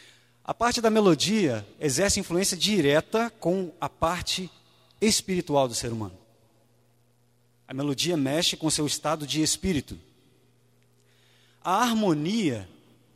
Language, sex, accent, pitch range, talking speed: Portuguese, male, Brazilian, 120-165 Hz, 115 wpm